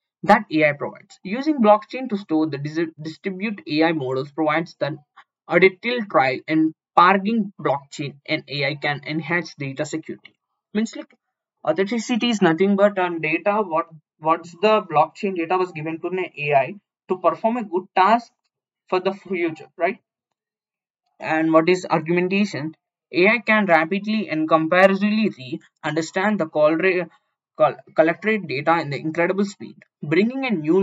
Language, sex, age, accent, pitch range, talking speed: English, male, 20-39, Indian, 160-205 Hz, 145 wpm